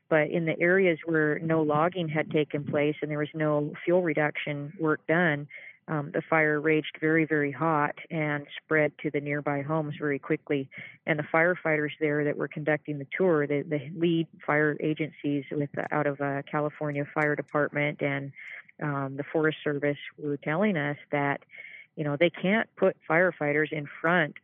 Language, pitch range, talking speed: English, 145-165 Hz, 180 wpm